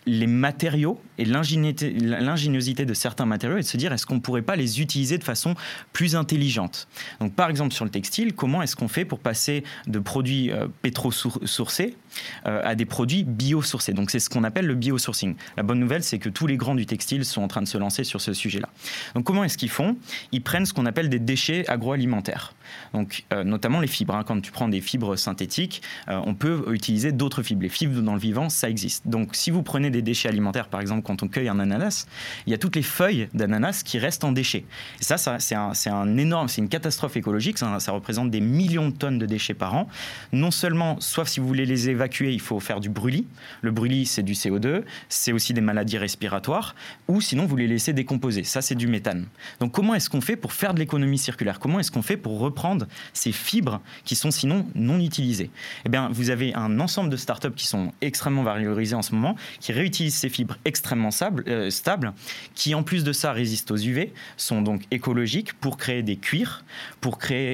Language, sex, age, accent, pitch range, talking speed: French, male, 30-49, French, 110-150 Hz, 220 wpm